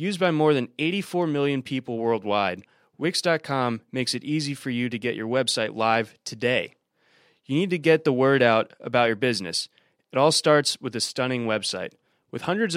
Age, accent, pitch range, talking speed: 20-39, American, 120-155 Hz, 185 wpm